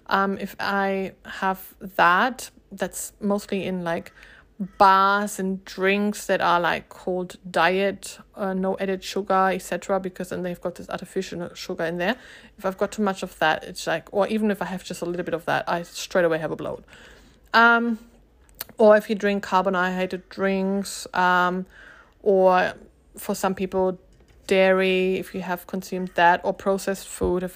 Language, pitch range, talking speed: English, 185-210 Hz, 175 wpm